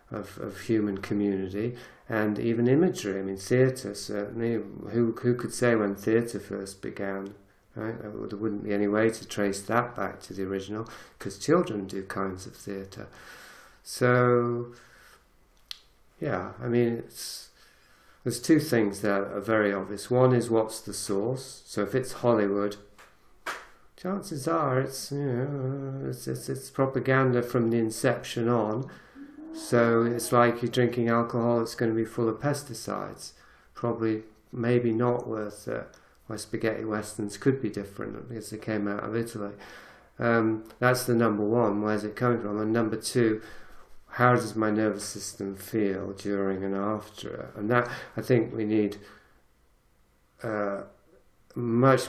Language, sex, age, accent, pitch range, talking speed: English, male, 50-69, British, 100-120 Hz, 150 wpm